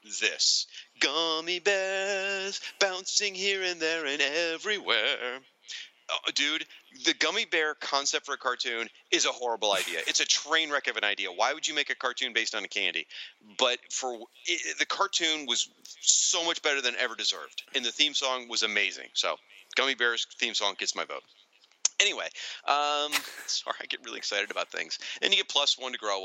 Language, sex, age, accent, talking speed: English, male, 40-59, American, 180 wpm